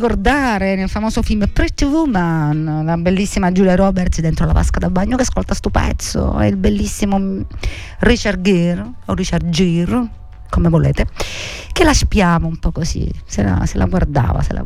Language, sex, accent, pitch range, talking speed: Italian, female, native, 165-225 Hz, 170 wpm